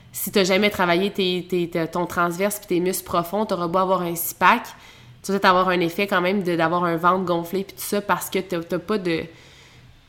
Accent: Canadian